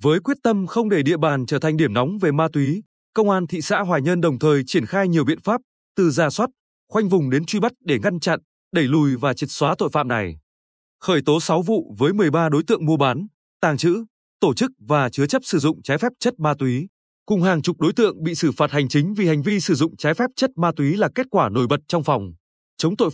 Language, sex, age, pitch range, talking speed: Vietnamese, male, 20-39, 150-200 Hz, 255 wpm